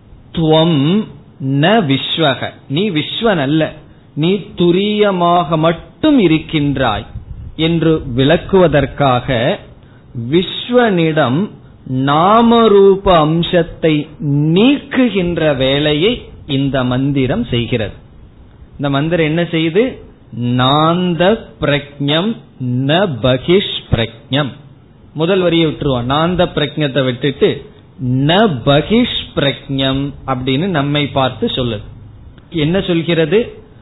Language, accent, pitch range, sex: Tamil, native, 130-175 Hz, male